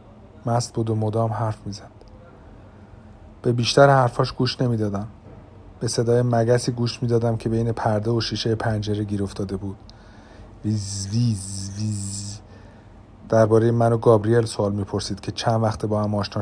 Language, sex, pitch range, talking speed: Persian, male, 105-120 Hz, 145 wpm